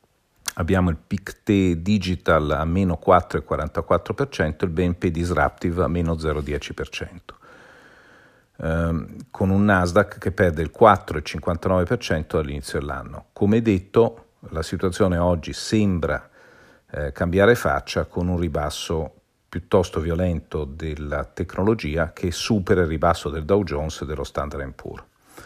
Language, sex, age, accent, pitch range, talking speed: Italian, male, 50-69, native, 80-95 Hz, 120 wpm